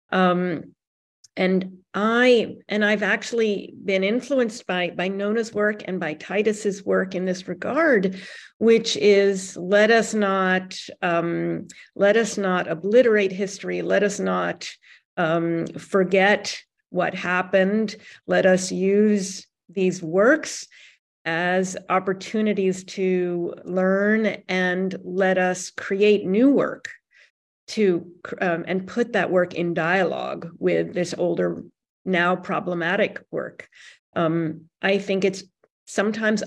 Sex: female